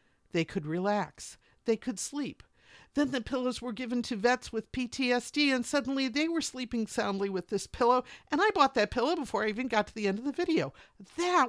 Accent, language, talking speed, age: American, English, 210 wpm, 50-69